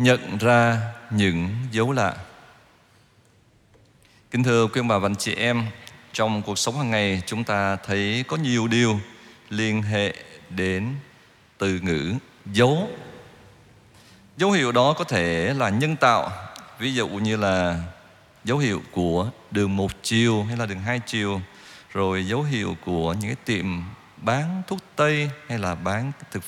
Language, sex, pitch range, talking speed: Vietnamese, male, 105-140 Hz, 150 wpm